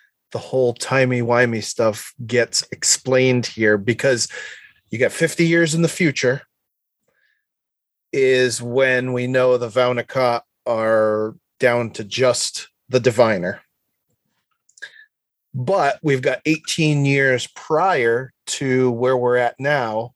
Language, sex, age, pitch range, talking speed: English, male, 30-49, 120-145 Hz, 115 wpm